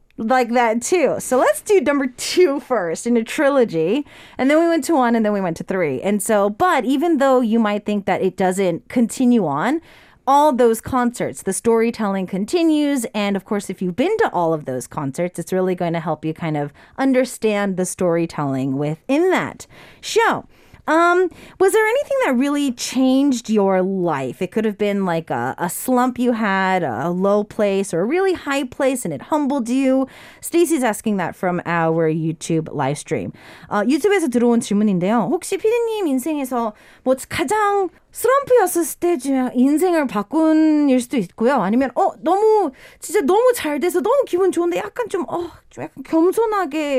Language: English